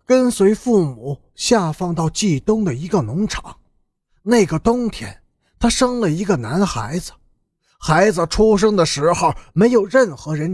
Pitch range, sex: 160-220 Hz, male